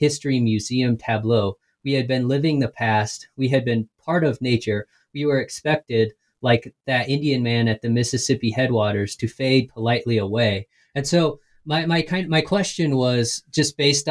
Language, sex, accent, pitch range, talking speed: English, male, American, 115-140 Hz, 175 wpm